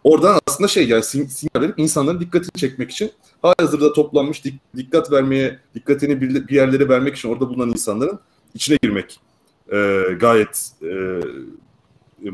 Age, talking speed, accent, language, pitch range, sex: 30-49, 130 wpm, native, Turkish, 100-140 Hz, male